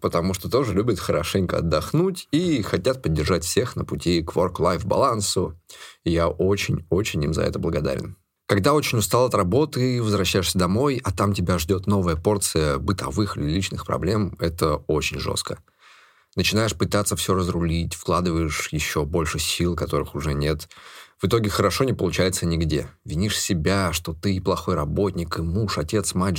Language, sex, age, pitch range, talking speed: Russian, male, 20-39, 85-105 Hz, 160 wpm